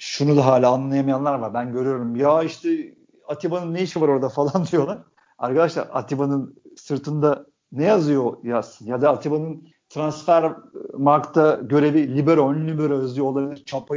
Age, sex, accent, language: 50-69, male, native, Turkish